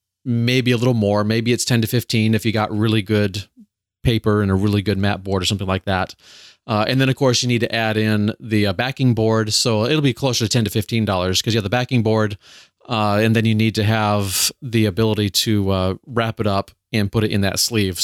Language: English